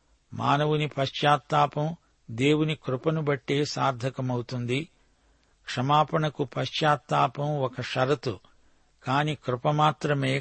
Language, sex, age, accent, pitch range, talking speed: Telugu, male, 60-79, native, 130-150 Hz, 70 wpm